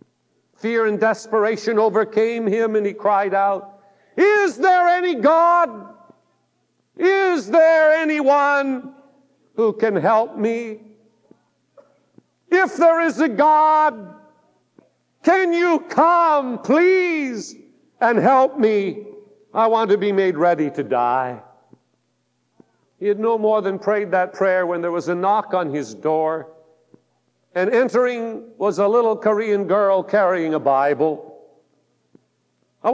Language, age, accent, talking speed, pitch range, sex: English, 50-69, American, 120 wpm, 195-260 Hz, male